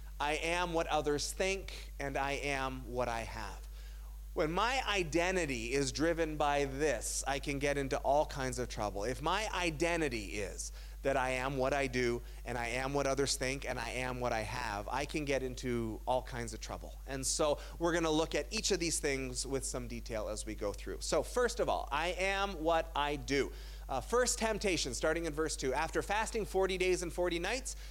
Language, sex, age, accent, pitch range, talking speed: English, male, 30-49, American, 130-195 Hz, 210 wpm